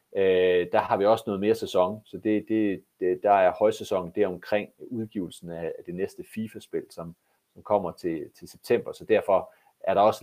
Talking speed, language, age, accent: 190 wpm, Danish, 40-59, native